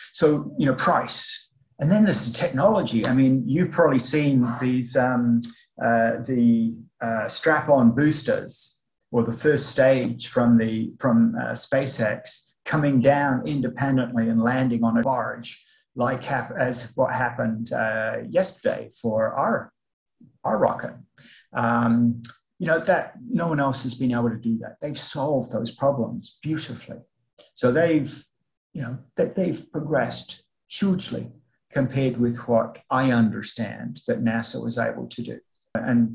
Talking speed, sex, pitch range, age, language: 145 wpm, male, 115-145 Hz, 30-49, English